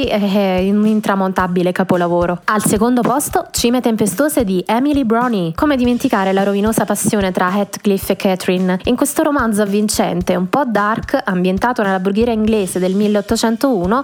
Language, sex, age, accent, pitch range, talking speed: Italian, female, 20-39, native, 195-245 Hz, 145 wpm